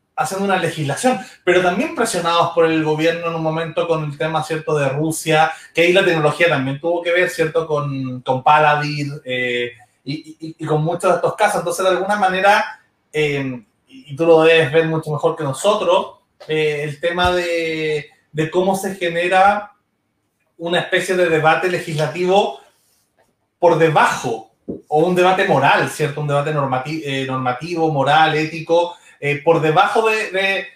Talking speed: 165 wpm